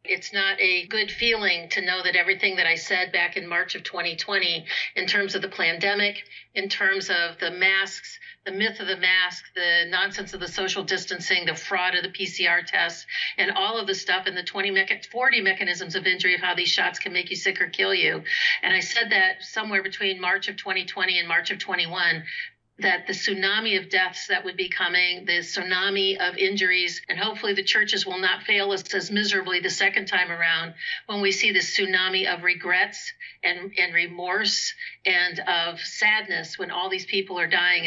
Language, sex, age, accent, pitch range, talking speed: English, female, 50-69, American, 180-210 Hz, 200 wpm